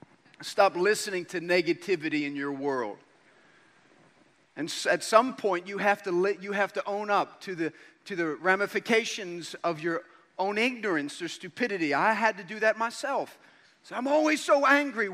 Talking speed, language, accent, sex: 165 wpm, English, American, male